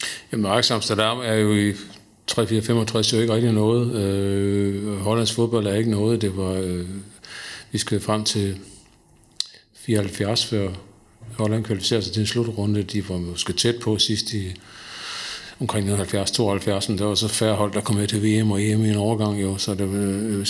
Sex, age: male, 50-69